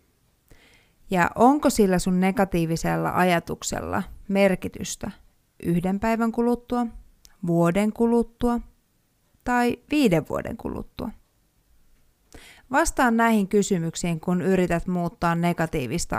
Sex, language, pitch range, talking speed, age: female, Finnish, 170-215 Hz, 85 wpm, 30-49